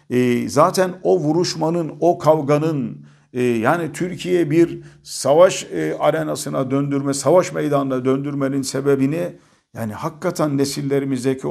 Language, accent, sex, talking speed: Turkish, native, male, 95 wpm